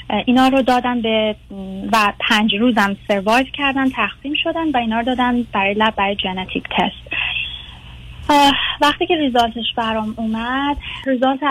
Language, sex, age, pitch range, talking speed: Persian, female, 30-49, 195-255 Hz, 125 wpm